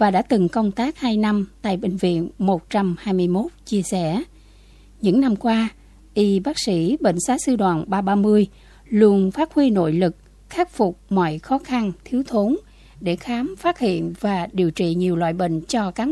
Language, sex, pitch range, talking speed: Vietnamese, female, 180-250 Hz, 180 wpm